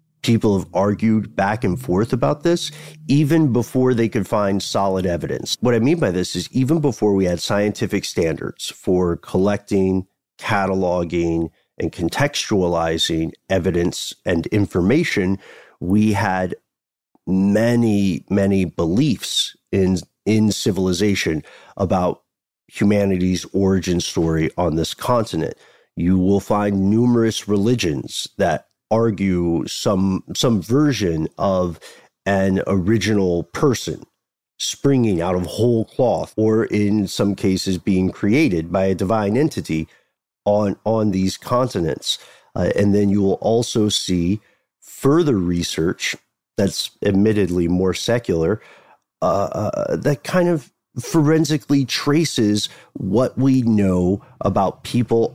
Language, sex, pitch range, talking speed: English, male, 95-115 Hz, 115 wpm